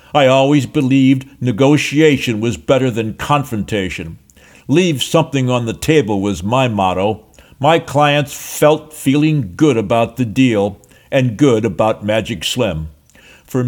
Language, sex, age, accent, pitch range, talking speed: English, male, 60-79, American, 115-155 Hz, 130 wpm